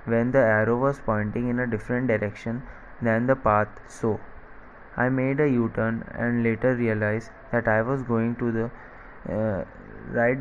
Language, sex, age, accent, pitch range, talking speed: English, male, 20-39, Indian, 110-125 Hz, 160 wpm